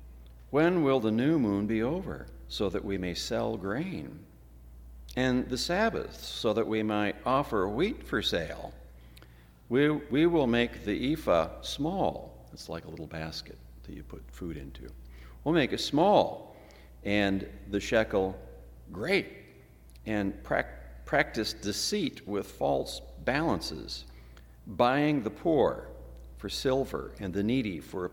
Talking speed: 140 wpm